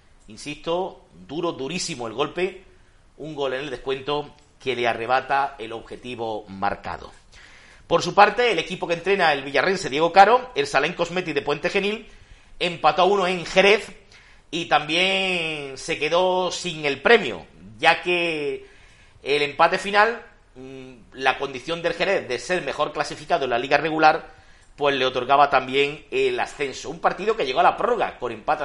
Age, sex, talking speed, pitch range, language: 50-69, male, 160 wpm, 125-175 Hz, Spanish